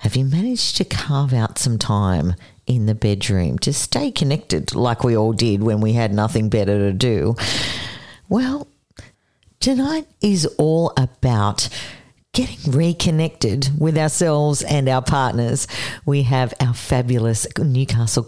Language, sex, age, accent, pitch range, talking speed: English, female, 50-69, Australian, 115-160 Hz, 140 wpm